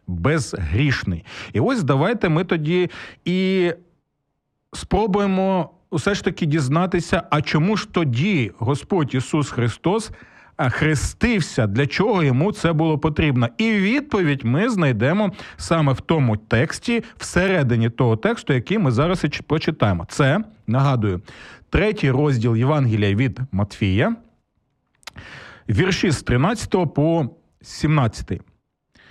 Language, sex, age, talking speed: Ukrainian, male, 40-59, 110 wpm